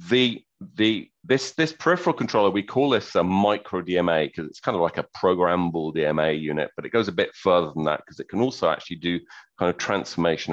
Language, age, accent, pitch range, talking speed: English, 40-59, British, 80-110 Hz, 215 wpm